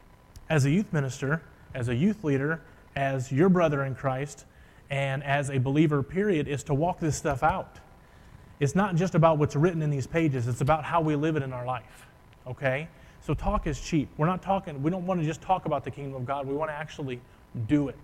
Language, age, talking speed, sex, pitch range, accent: English, 30-49, 225 wpm, male, 135-165 Hz, American